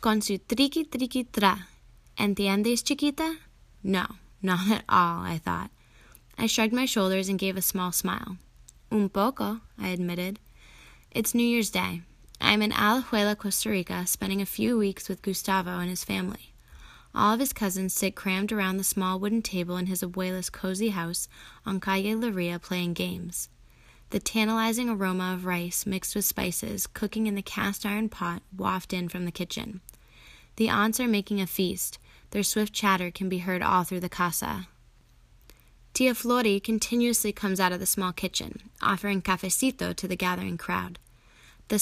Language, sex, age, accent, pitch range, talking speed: English, female, 10-29, American, 180-215 Hz, 165 wpm